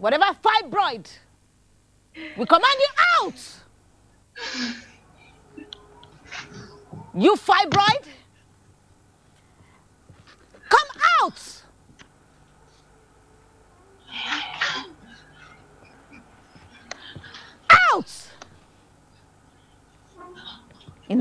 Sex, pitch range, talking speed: female, 255-380 Hz, 35 wpm